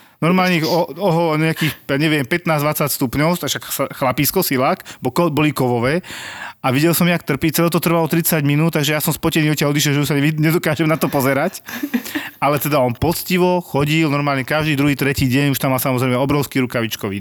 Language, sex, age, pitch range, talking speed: Slovak, male, 30-49, 125-150 Hz, 180 wpm